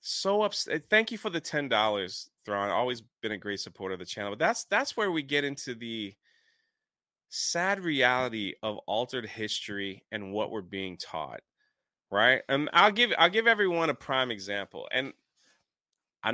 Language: English